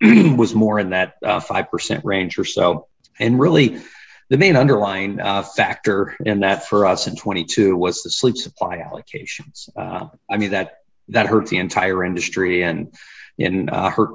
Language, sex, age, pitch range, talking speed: English, male, 40-59, 90-105 Hz, 170 wpm